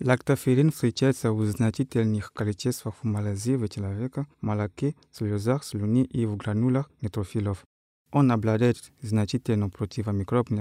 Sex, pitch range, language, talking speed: male, 105-125 Hz, Russian, 105 wpm